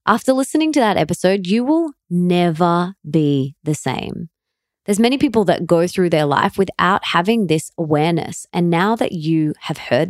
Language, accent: English, Australian